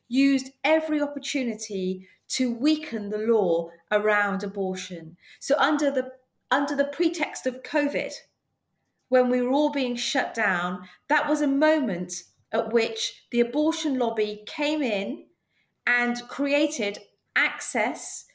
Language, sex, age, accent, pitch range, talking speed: English, female, 40-59, British, 210-285 Hz, 125 wpm